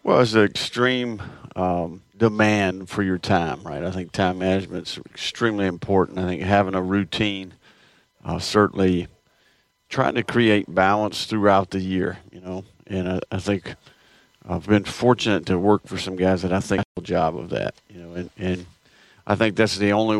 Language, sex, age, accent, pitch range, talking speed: English, male, 50-69, American, 95-105 Hz, 180 wpm